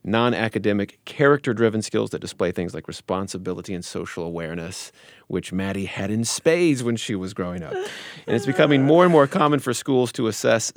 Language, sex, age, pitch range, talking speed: English, male, 30-49, 100-125 Hz, 180 wpm